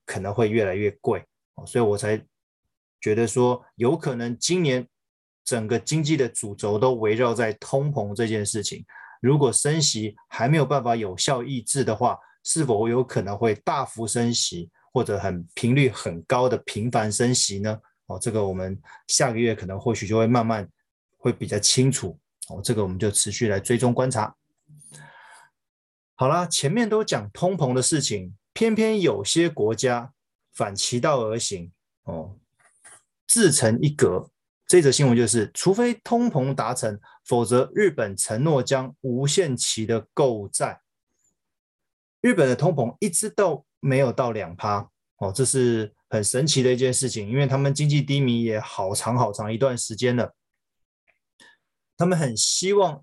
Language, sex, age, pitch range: Chinese, male, 20-39, 110-135 Hz